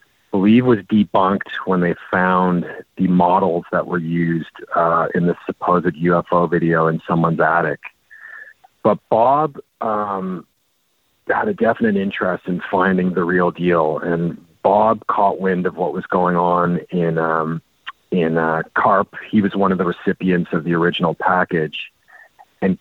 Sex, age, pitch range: male, 40-59, 85-105 Hz